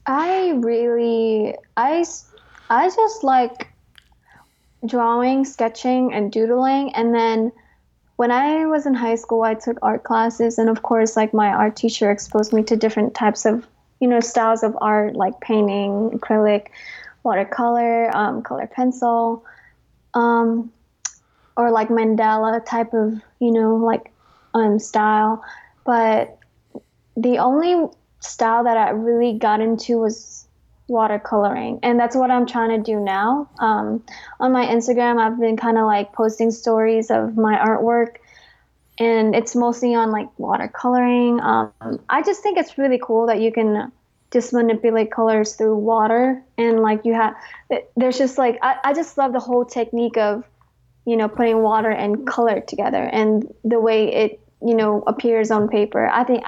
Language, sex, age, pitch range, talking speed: English, female, 20-39, 220-245 Hz, 155 wpm